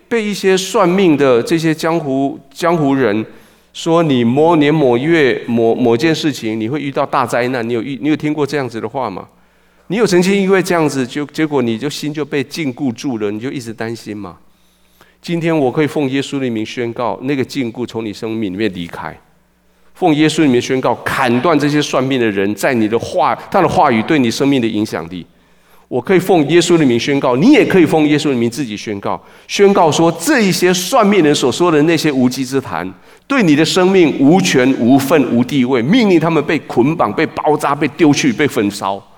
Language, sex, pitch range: Chinese, male, 120-165 Hz